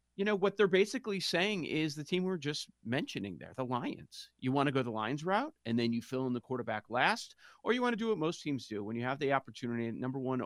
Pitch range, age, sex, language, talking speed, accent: 120-160 Hz, 40-59, male, English, 265 wpm, American